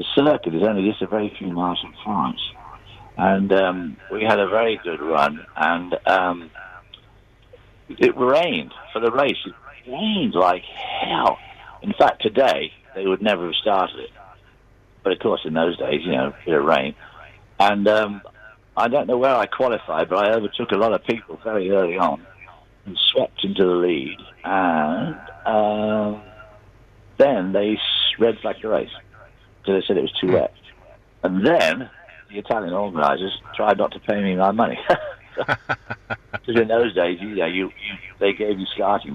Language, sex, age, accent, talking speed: English, male, 60-79, British, 170 wpm